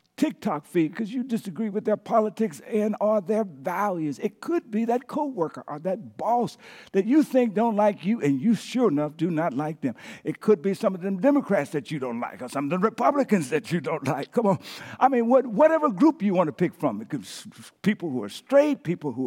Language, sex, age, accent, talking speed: English, male, 50-69, American, 230 wpm